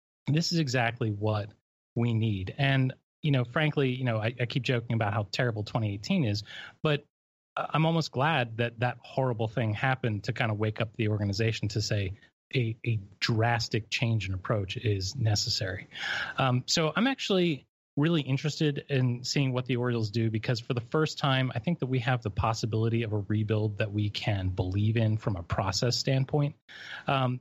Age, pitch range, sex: 30-49, 115-140 Hz, male